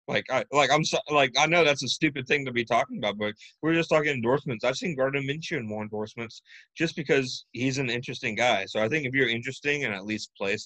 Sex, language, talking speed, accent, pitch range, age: male, English, 250 wpm, American, 105-135 Hz, 30-49